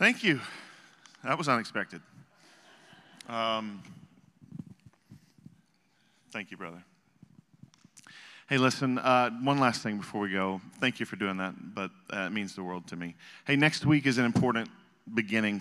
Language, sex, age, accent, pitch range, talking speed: English, male, 40-59, American, 110-140 Hz, 145 wpm